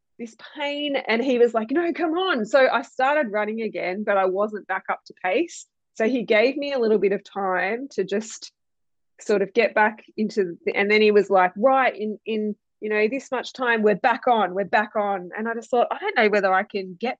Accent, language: Australian, English